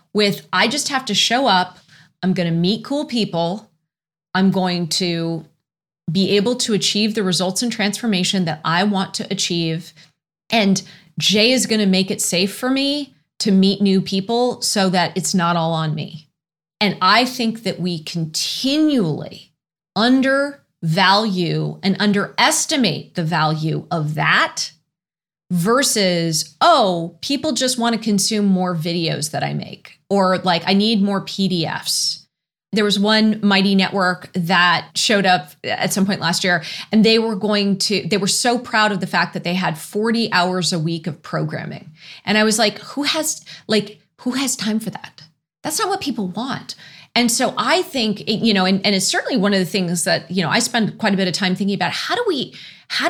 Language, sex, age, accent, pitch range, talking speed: English, female, 30-49, American, 170-220 Hz, 185 wpm